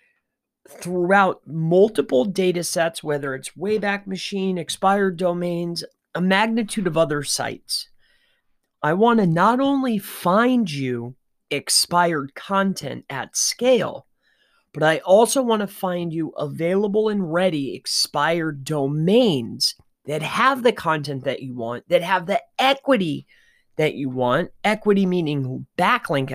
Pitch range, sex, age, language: 150-215 Hz, male, 30-49, English